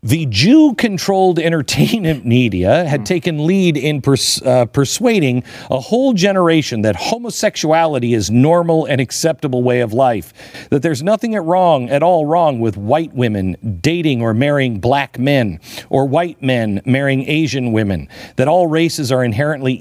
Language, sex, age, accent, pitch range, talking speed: English, male, 50-69, American, 125-175 Hz, 145 wpm